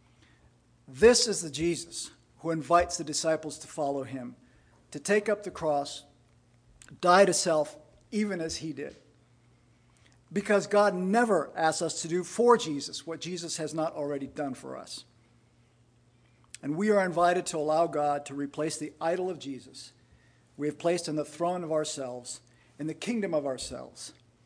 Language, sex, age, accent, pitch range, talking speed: English, male, 50-69, American, 125-185 Hz, 160 wpm